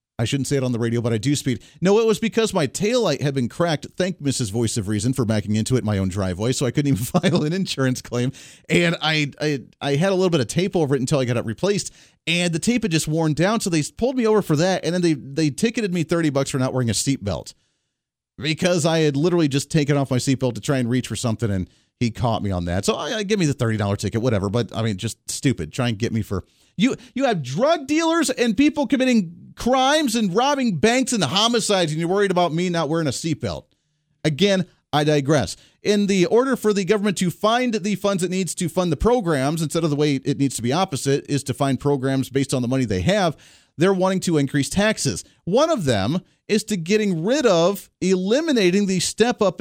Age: 40-59